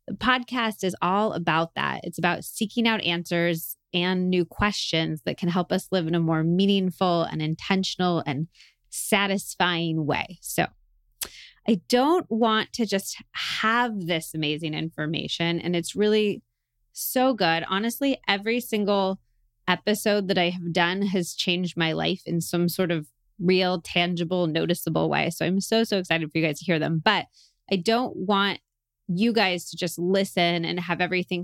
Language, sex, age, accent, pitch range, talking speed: English, female, 20-39, American, 165-200 Hz, 165 wpm